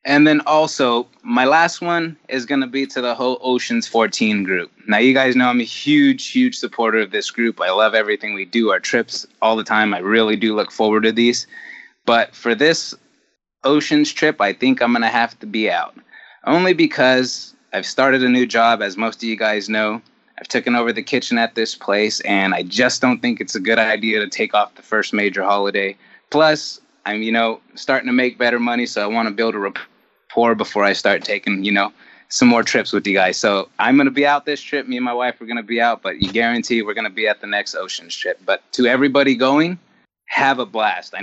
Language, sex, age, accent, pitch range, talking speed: English, male, 20-39, American, 110-135 Hz, 230 wpm